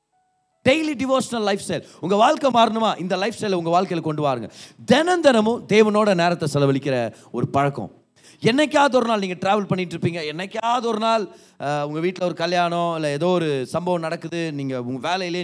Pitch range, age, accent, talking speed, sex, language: 135-210 Hz, 30-49, native, 165 wpm, male, Tamil